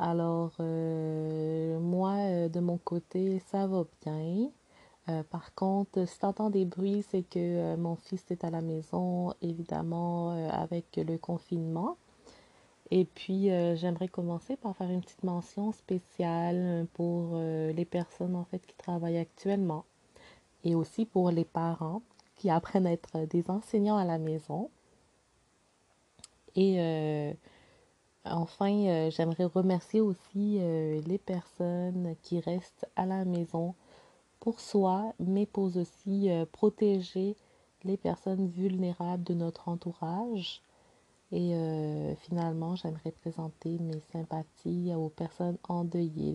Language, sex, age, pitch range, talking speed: French, female, 30-49, 165-185 Hz, 135 wpm